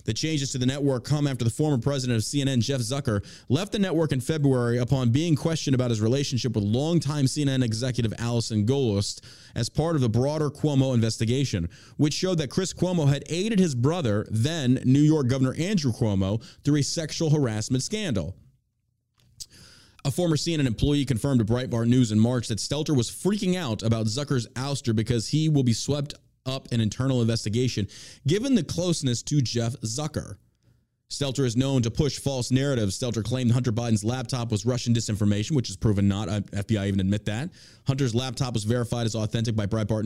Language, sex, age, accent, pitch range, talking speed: English, male, 30-49, American, 115-145 Hz, 185 wpm